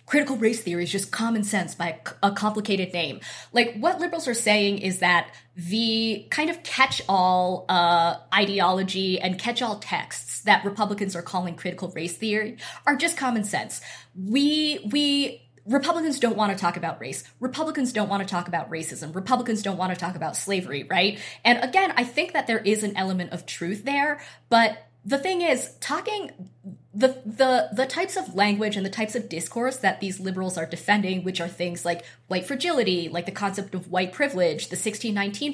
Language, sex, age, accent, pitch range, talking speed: English, female, 20-39, American, 180-230 Hz, 185 wpm